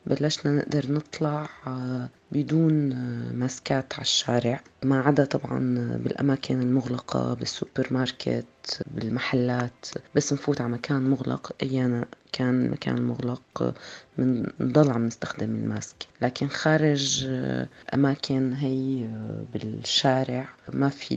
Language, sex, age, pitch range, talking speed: Arabic, female, 30-49, 125-145 Hz, 100 wpm